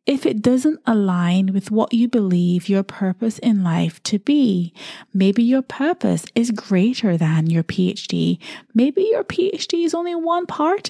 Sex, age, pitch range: female, 20-39, 190-255 Hz